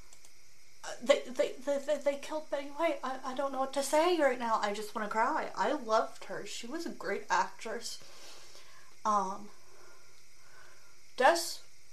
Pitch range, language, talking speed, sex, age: 210-265 Hz, English, 160 wpm, female, 30-49